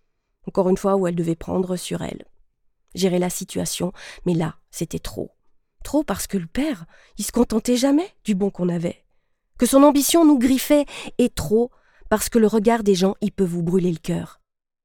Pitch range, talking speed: 185-240 Hz, 195 wpm